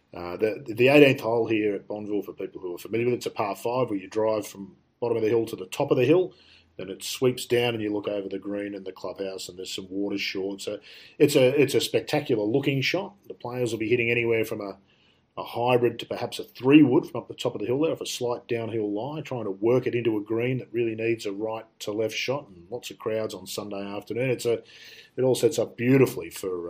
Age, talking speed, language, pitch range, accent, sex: 40-59, 260 wpm, English, 110-140 Hz, Australian, male